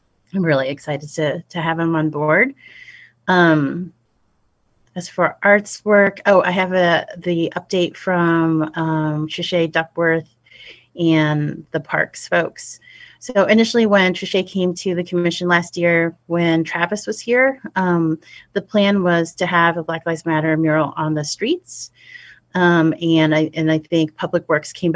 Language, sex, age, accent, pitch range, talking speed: English, female, 30-49, American, 155-180 Hz, 155 wpm